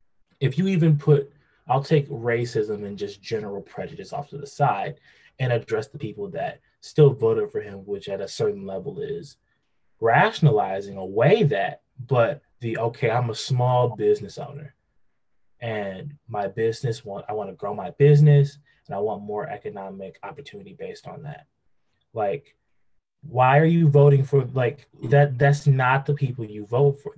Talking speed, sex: 165 wpm, male